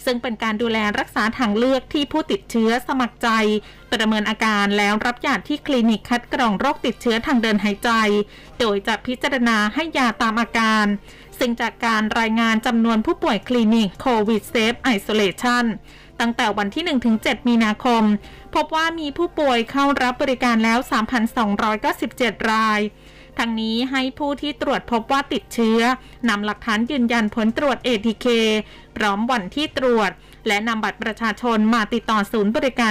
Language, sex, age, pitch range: Thai, female, 20-39, 215-260 Hz